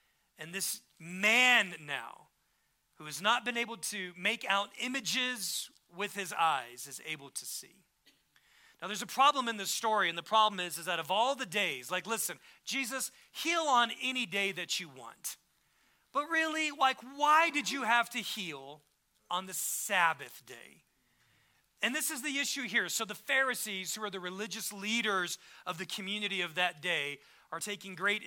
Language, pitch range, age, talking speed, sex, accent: English, 180-240 Hz, 40-59, 175 wpm, male, American